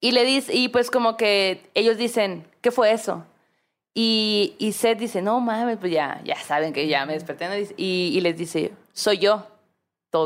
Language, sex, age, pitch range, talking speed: Spanish, female, 20-39, 185-250 Hz, 195 wpm